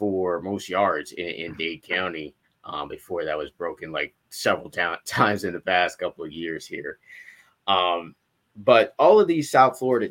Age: 30-49